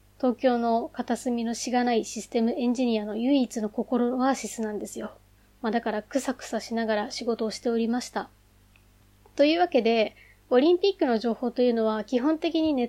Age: 20-39